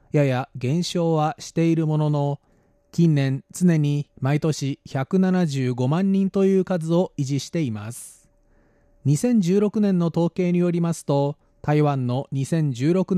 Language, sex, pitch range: Japanese, male, 135-175 Hz